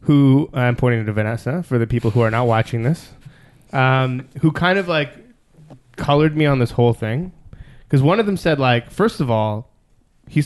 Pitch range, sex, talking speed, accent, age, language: 115-155 Hz, male, 195 wpm, American, 20-39, English